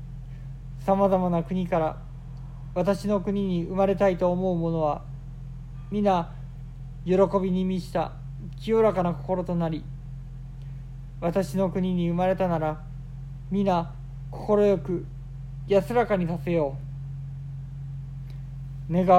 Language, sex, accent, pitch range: Japanese, male, native, 135-185 Hz